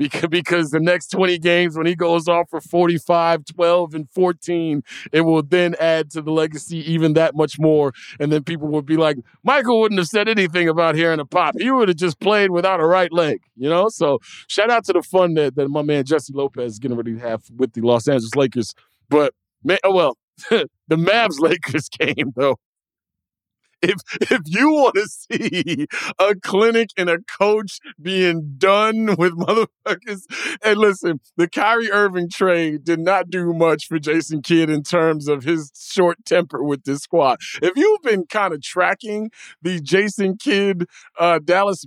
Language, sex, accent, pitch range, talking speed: English, male, American, 160-200 Hz, 180 wpm